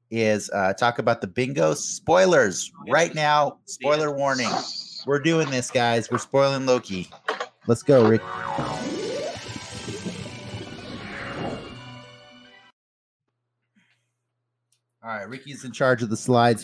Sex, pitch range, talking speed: male, 115-135 Hz, 105 wpm